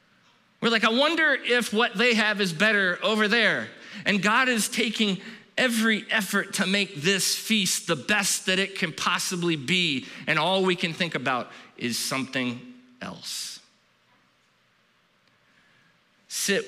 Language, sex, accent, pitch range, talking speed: English, male, American, 145-215 Hz, 140 wpm